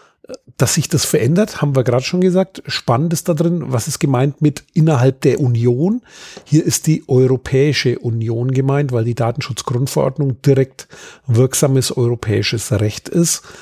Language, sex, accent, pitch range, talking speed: German, male, German, 120-150 Hz, 150 wpm